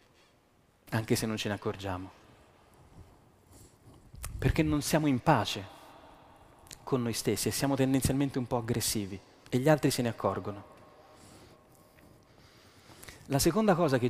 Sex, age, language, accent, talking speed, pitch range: male, 30-49, Italian, native, 130 wpm, 110-145 Hz